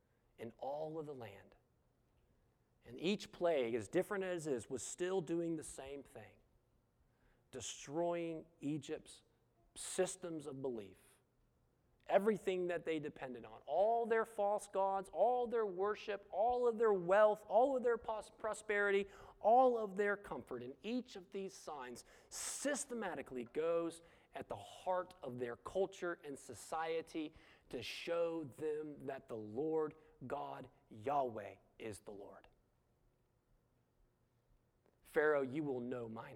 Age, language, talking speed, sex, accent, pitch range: 40-59, English, 130 wpm, male, American, 145-200 Hz